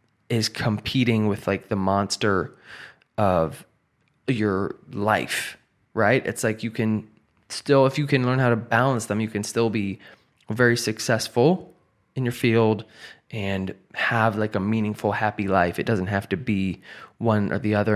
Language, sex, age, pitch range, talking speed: English, male, 20-39, 105-135 Hz, 160 wpm